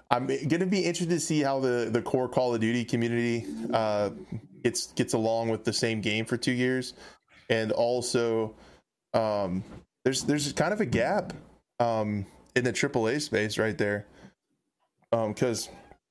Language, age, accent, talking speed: English, 20-39, American, 155 wpm